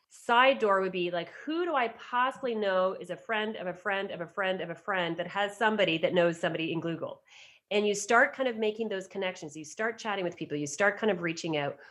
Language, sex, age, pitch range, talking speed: English, female, 30-49, 180-250 Hz, 245 wpm